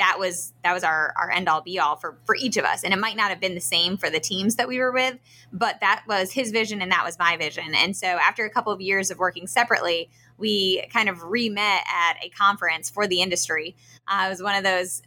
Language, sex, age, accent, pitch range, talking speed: English, female, 20-39, American, 170-200 Hz, 265 wpm